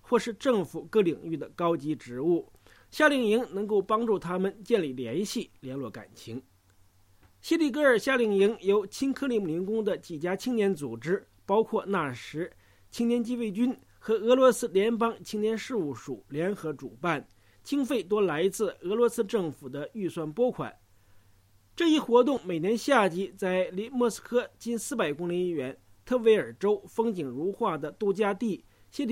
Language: English